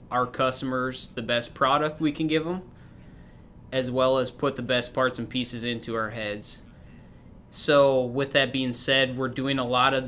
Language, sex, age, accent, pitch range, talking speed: English, male, 20-39, American, 115-135 Hz, 185 wpm